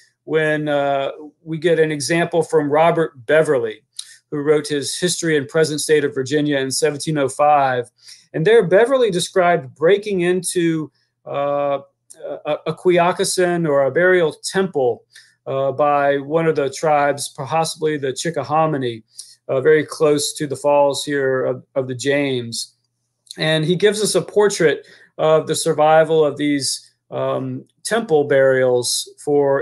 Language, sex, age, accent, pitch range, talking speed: English, male, 40-59, American, 140-170 Hz, 140 wpm